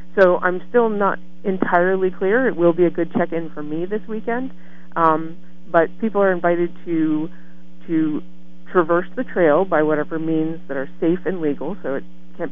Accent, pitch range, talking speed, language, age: American, 150-185 Hz, 175 wpm, English, 50-69